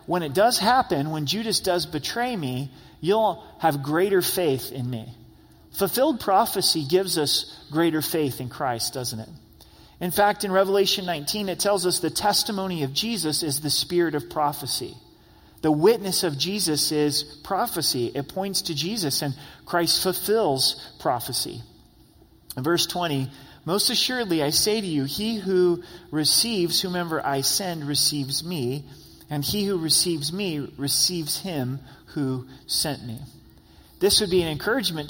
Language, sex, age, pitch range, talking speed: English, male, 40-59, 135-180 Hz, 150 wpm